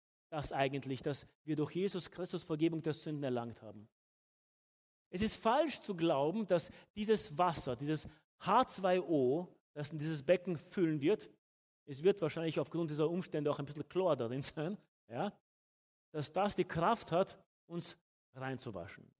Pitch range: 135-175 Hz